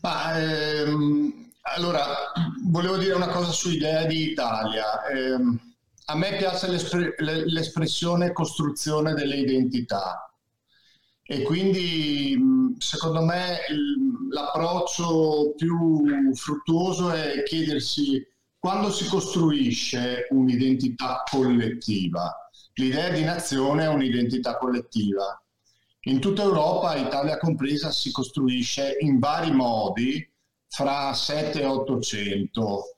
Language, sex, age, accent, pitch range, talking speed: Italian, male, 50-69, native, 125-165 Hz, 95 wpm